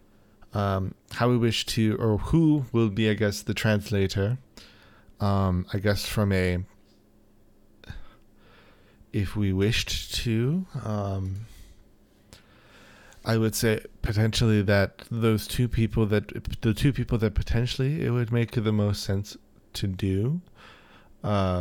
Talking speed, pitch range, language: 130 wpm, 100-110 Hz, English